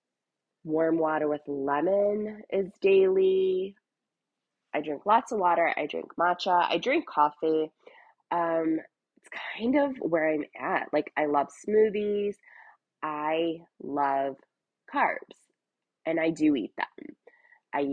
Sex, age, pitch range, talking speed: female, 20-39, 140-185 Hz, 125 wpm